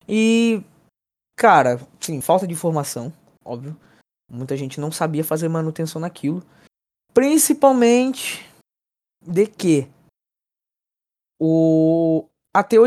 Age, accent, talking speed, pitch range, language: 20-39, Brazilian, 90 wpm, 155-215 Hz, Portuguese